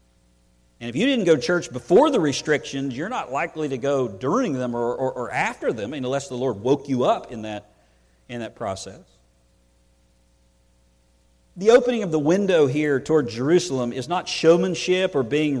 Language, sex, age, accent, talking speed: English, male, 50-69, American, 175 wpm